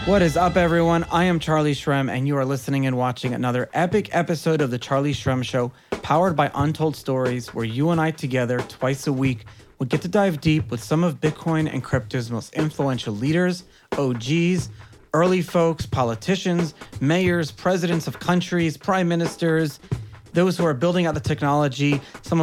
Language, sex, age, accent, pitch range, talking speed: English, male, 30-49, American, 125-165 Hz, 180 wpm